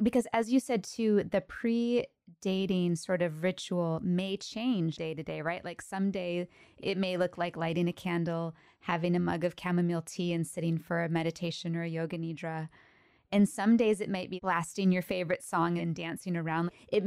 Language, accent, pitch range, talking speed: English, American, 165-185 Hz, 190 wpm